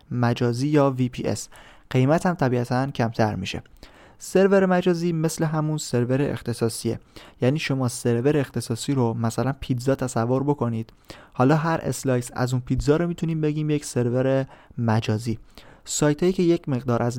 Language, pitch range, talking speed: Persian, 120-150 Hz, 145 wpm